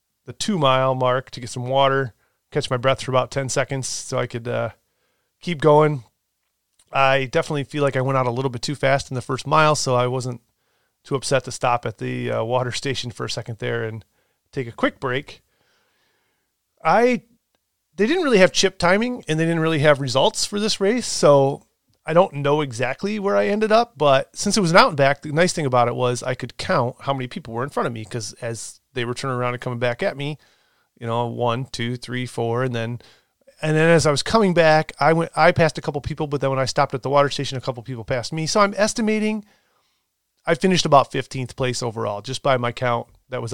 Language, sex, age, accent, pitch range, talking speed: English, male, 30-49, American, 125-155 Hz, 235 wpm